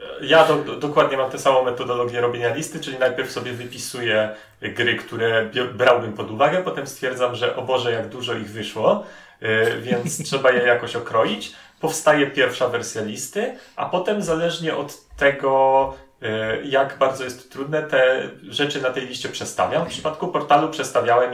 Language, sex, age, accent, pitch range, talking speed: Polish, male, 30-49, native, 120-150 Hz, 165 wpm